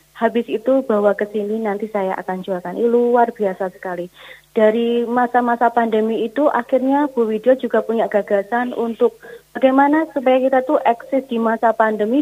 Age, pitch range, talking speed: 20-39, 200-240 Hz, 155 wpm